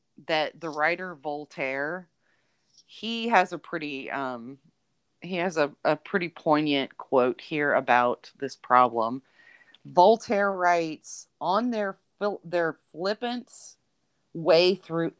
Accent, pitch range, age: American, 145-185 Hz, 30-49